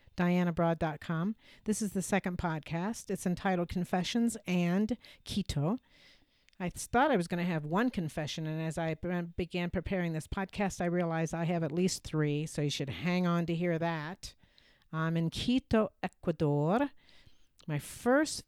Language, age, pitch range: English, 50-69, 155-190 Hz